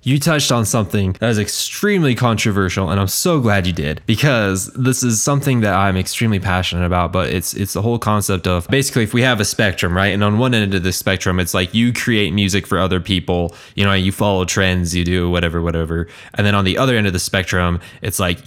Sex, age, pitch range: male, 10-29, 90-120 Hz